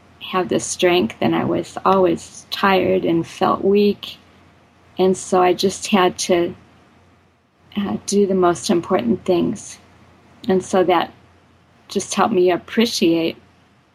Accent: American